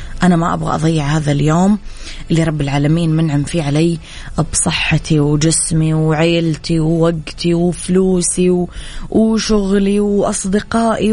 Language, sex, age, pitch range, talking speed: Arabic, female, 20-39, 160-195 Hz, 100 wpm